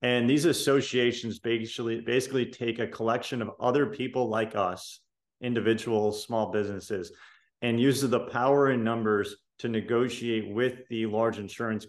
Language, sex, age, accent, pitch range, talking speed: English, male, 30-49, American, 110-125 Hz, 140 wpm